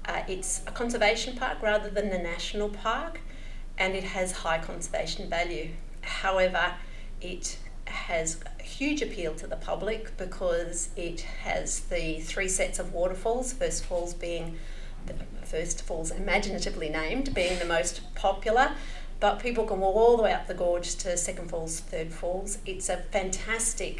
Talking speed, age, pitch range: 155 wpm, 40-59, 175-215 Hz